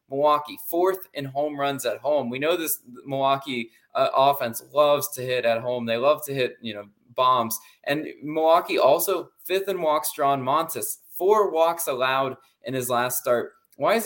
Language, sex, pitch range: English, male, 125-160 Hz